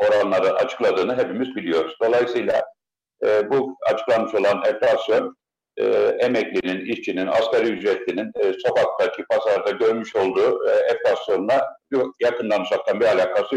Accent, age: native, 60-79